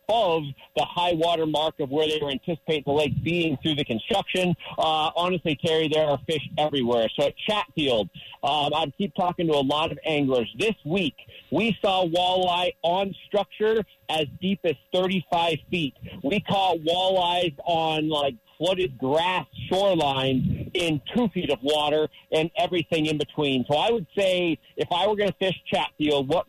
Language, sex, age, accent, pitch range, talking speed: English, male, 40-59, American, 150-185 Hz, 170 wpm